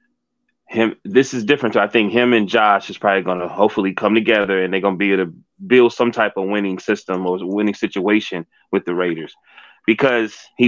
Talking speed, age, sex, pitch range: 210 wpm, 20-39, male, 105-155 Hz